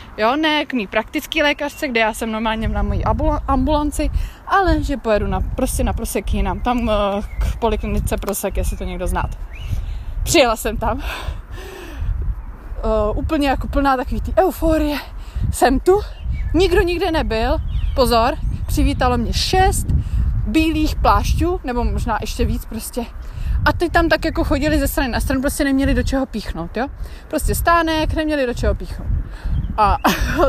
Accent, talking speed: native, 150 wpm